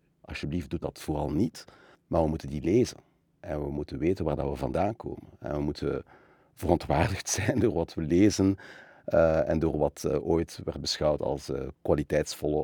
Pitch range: 75-90 Hz